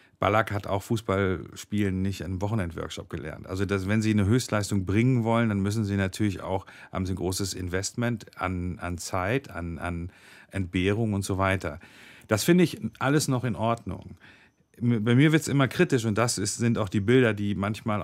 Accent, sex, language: German, male, German